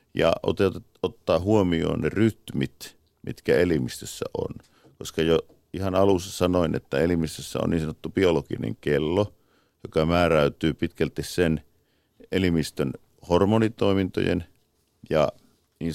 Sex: male